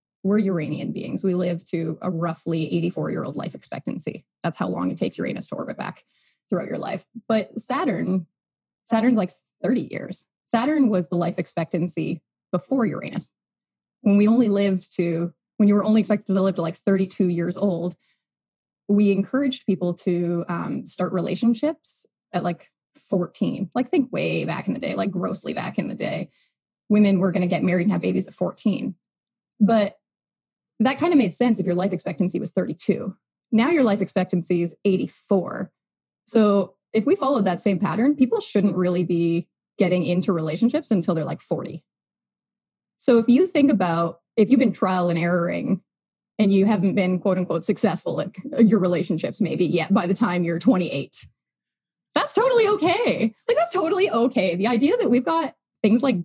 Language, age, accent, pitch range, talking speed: English, 10-29, American, 180-235 Hz, 180 wpm